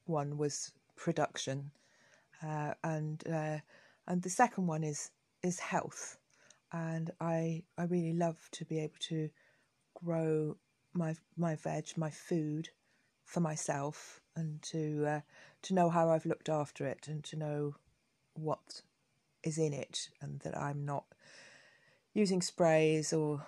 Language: English